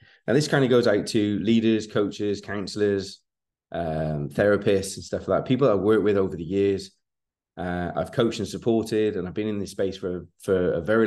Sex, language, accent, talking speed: male, English, British, 210 wpm